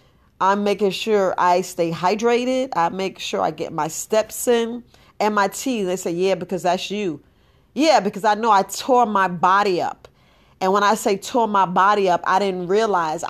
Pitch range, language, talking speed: 185-225 Hz, English, 195 wpm